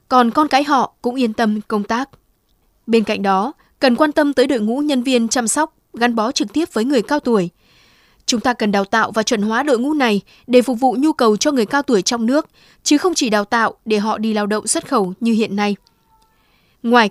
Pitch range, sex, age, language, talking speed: 215-275 Hz, female, 20-39, Vietnamese, 240 wpm